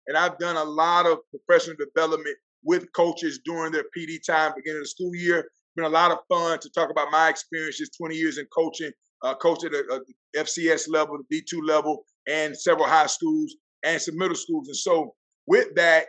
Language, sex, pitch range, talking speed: English, male, 160-205 Hz, 200 wpm